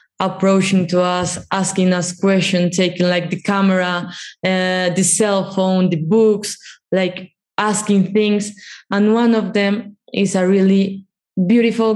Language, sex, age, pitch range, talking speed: English, female, 20-39, 185-210 Hz, 135 wpm